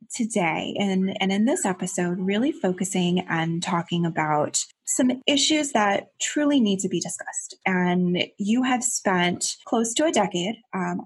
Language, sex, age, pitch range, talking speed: English, female, 20-39, 175-215 Hz, 150 wpm